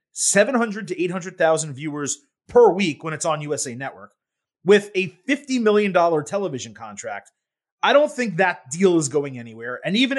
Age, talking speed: 30-49, 165 wpm